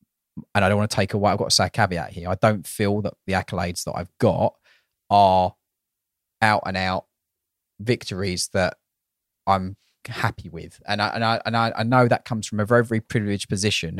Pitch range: 90-110 Hz